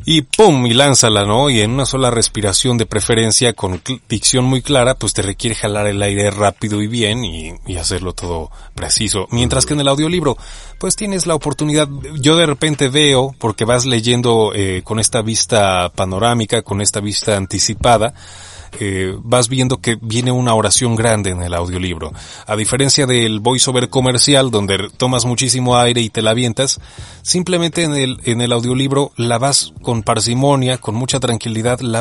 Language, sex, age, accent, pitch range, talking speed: Spanish, male, 30-49, Mexican, 105-135 Hz, 175 wpm